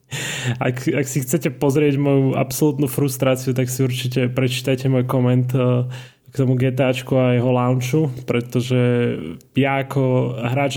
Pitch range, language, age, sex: 125-140 Hz, Slovak, 20-39, male